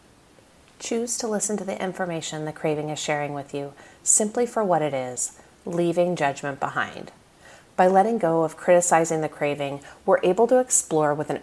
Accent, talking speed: American, 175 wpm